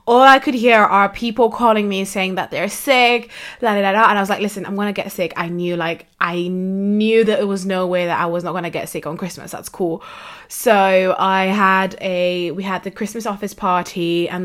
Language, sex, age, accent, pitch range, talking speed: English, female, 20-39, British, 175-215 Hz, 245 wpm